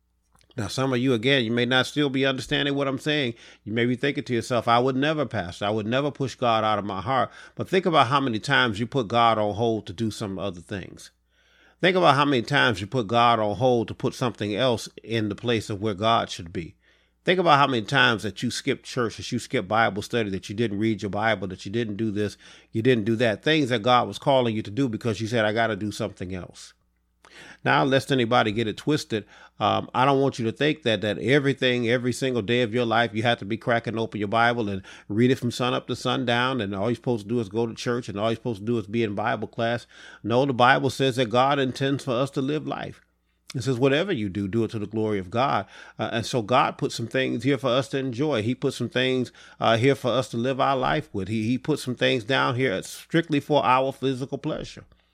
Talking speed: 255 wpm